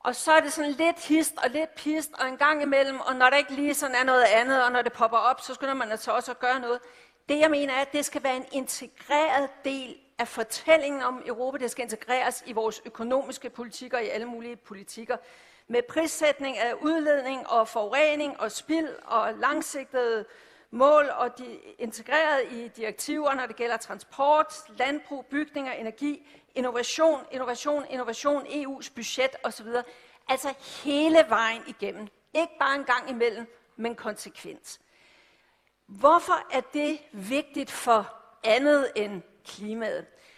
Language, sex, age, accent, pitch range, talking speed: Danish, female, 50-69, native, 235-290 Hz, 165 wpm